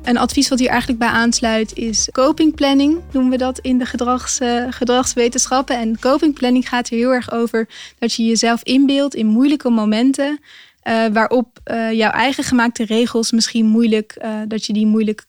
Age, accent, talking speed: 10-29, Dutch, 180 wpm